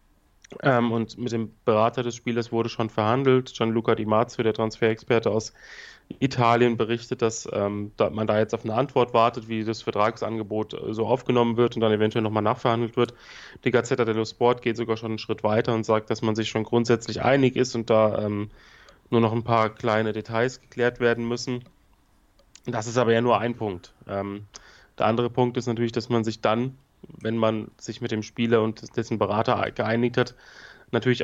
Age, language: 30-49, German